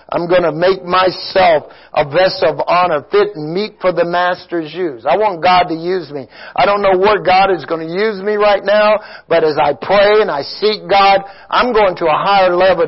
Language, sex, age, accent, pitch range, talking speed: English, male, 60-79, American, 145-185 Hz, 225 wpm